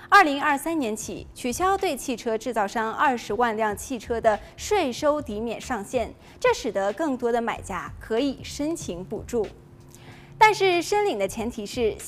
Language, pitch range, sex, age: Chinese, 225-330 Hz, female, 20-39